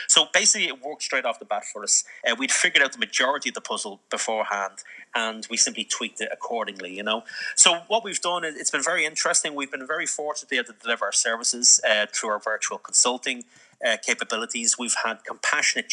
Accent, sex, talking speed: Irish, male, 220 wpm